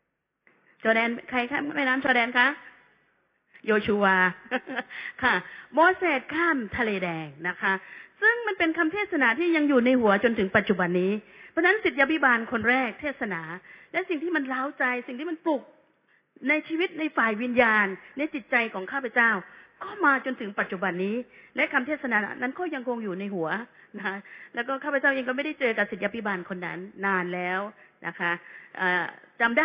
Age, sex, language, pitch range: 30-49, female, Thai, 200-285 Hz